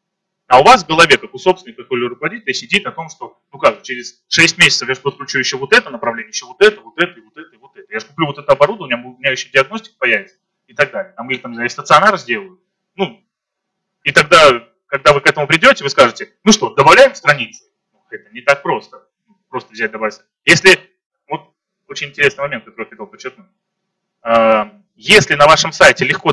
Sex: male